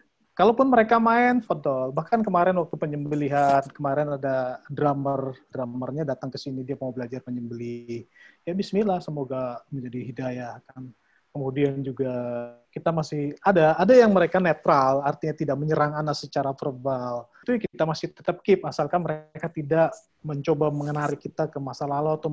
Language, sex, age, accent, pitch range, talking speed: Indonesian, male, 30-49, native, 145-190 Hz, 150 wpm